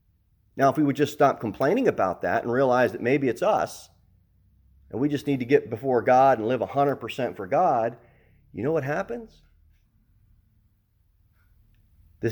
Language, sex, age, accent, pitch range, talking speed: English, male, 40-59, American, 85-120 Hz, 160 wpm